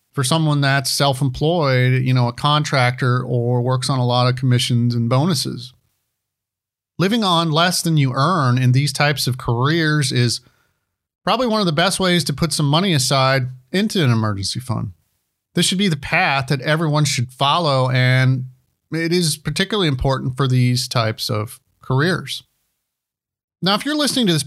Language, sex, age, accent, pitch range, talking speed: English, male, 40-59, American, 125-160 Hz, 170 wpm